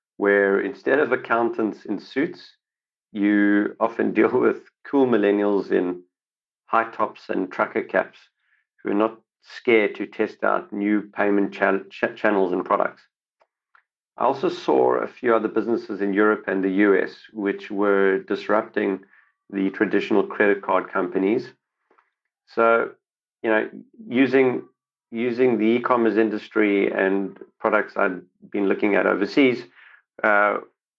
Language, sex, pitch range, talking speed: English, male, 100-115 Hz, 130 wpm